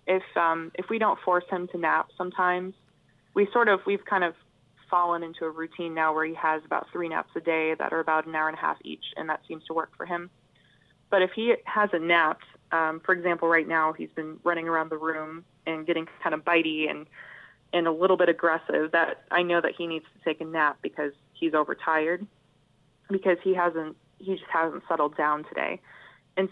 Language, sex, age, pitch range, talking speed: English, female, 20-39, 155-180 Hz, 215 wpm